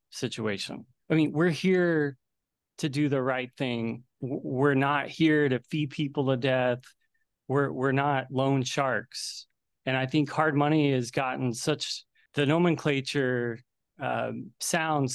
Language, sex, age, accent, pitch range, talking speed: English, male, 30-49, American, 120-145 Hz, 140 wpm